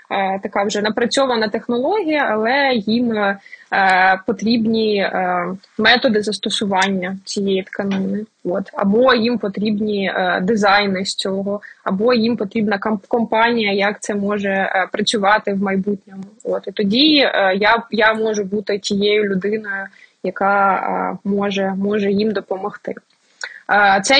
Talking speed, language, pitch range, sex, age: 105 wpm, Ukrainian, 200-230 Hz, female, 20-39